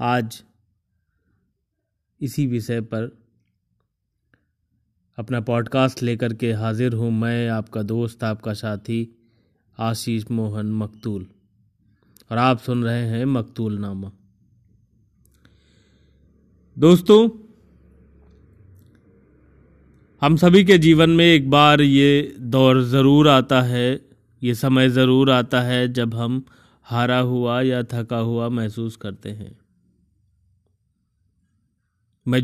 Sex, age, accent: male, 30-49, native